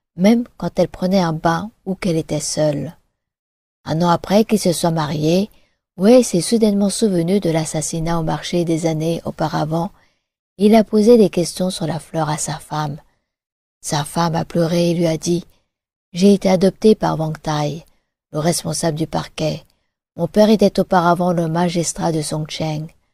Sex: female